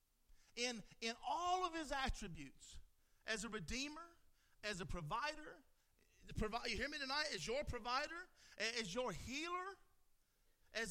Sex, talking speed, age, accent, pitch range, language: male, 140 wpm, 50-69, American, 225-295 Hz, English